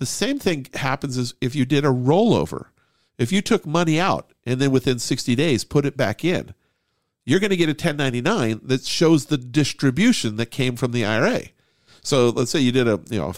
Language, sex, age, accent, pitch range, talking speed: English, male, 50-69, American, 115-150 Hz, 215 wpm